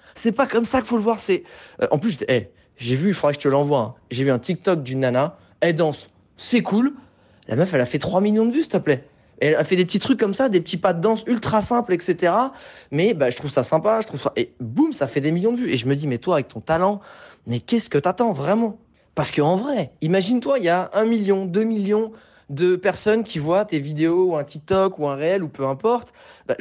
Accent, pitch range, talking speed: French, 140-215 Hz, 270 wpm